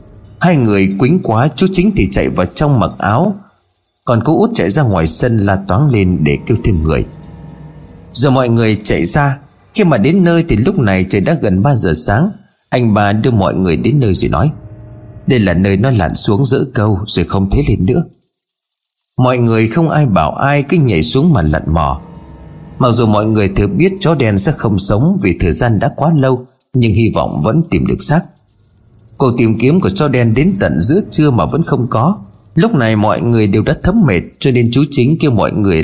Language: Vietnamese